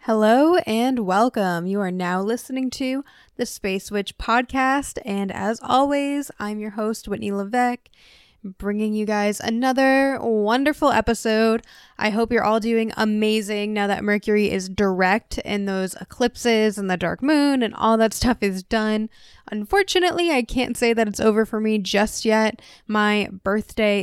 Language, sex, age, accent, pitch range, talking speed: English, female, 10-29, American, 195-225 Hz, 155 wpm